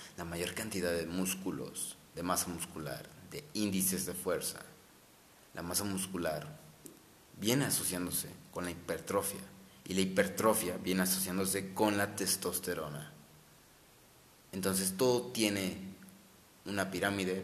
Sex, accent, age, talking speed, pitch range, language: male, Mexican, 30-49, 115 wpm, 90-100 Hz, Spanish